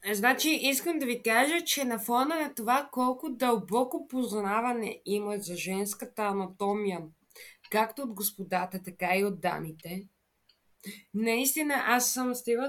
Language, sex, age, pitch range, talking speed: Bulgarian, female, 20-39, 205-270 Hz, 130 wpm